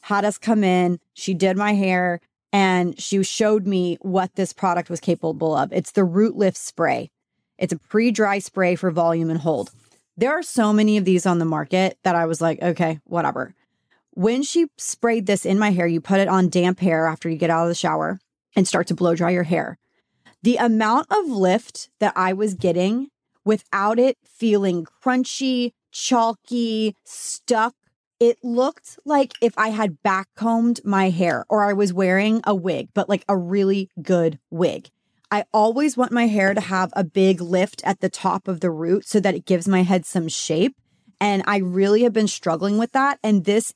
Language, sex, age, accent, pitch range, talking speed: English, female, 30-49, American, 180-215 Hz, 195 wpm